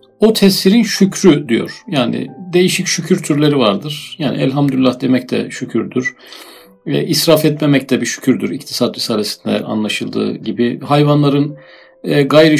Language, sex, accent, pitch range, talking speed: Turkish, male, native, 130-155 Hz, 120 wpm